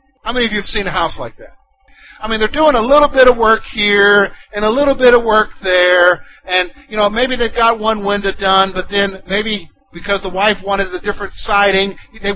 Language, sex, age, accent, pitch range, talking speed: English, male, 50-69, American, 195-260 Hz, 230 wpm